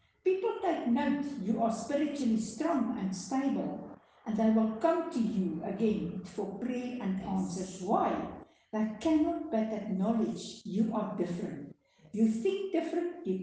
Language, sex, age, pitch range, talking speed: English, female, 60-79, 195-260 Hz, 145 wpm